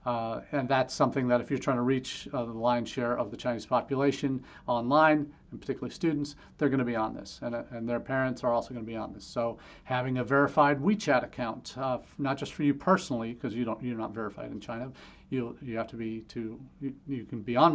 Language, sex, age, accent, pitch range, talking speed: English, male, 40-59, American, 115-135 Hz, 245 wpm